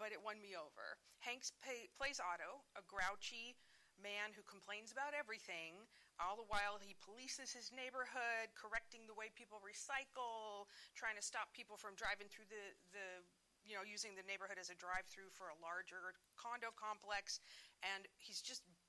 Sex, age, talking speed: female, 40-59, 170 wpm